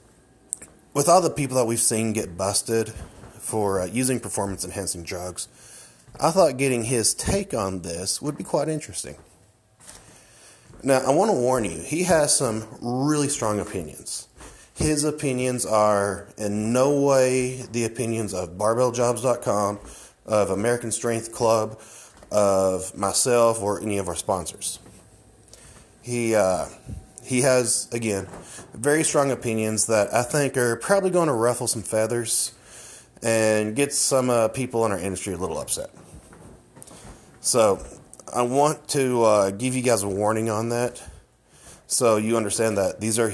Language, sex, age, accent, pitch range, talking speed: English, male, 30-49, American, 105-125 Hz, 145 wpm